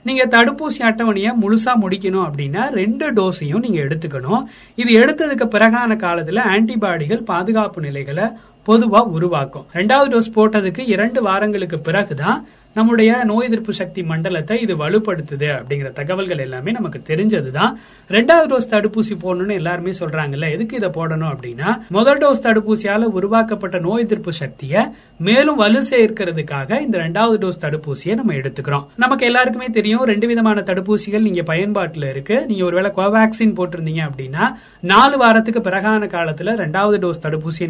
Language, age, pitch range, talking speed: Tamil, 30-49, 175-230 Hz, 120 wpm